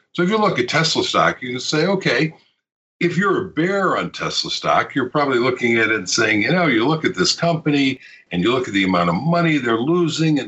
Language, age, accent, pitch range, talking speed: English, 60-79, American, 90-155 Hz, 245 wpm